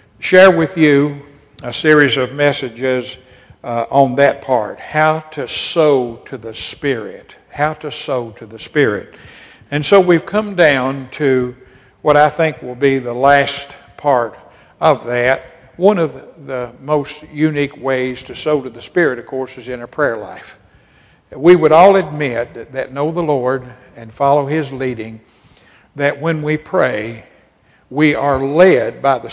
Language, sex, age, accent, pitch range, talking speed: English, male, 60-79, American, 130-155 Hz, 160 wpm